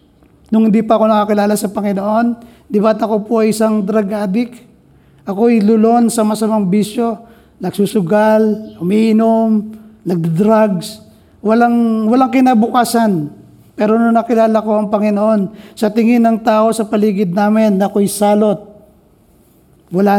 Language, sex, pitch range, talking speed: Filipino, male, 200-225 Hz, 125 wpm